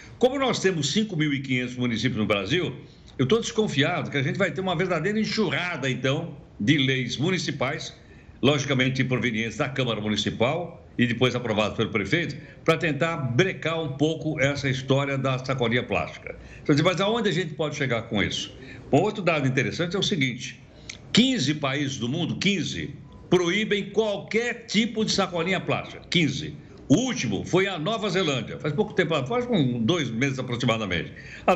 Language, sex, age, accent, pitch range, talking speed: Portuguese, male, 60-79, Brazilian, 130-195 Hz, 160 wpm